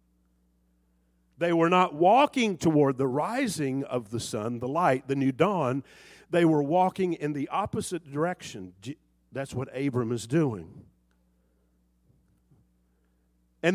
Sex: male